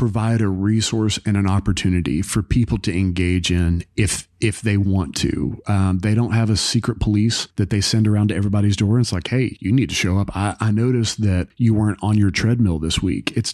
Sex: male